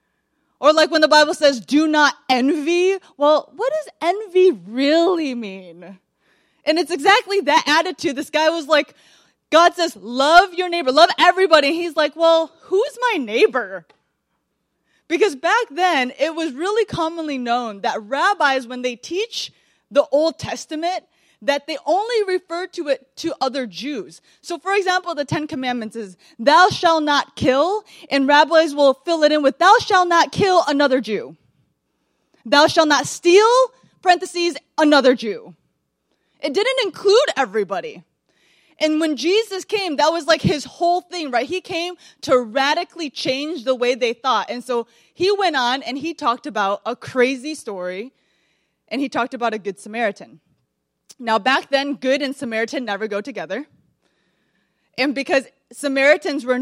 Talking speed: 160 wpm